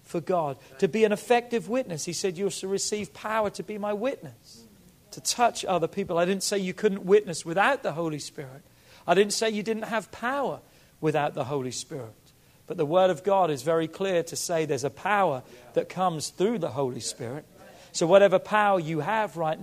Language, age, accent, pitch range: English, 40-59, British, 155-205 Hz